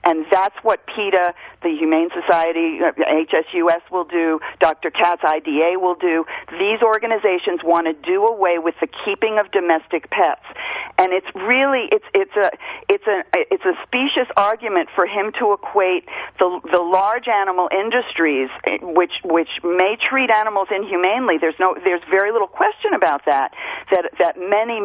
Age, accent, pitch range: 50-69, American, 170-230 Hz